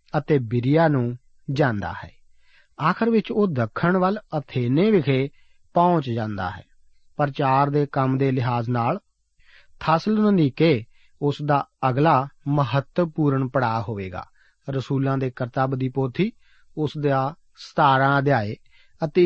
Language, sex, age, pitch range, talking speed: Punjabi, male, 40-59, 130-175 Hz, 120 wpm